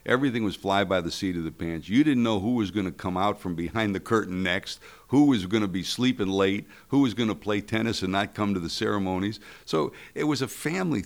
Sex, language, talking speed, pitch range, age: male, English, 255 wpm, 90-115 Hz, 60-79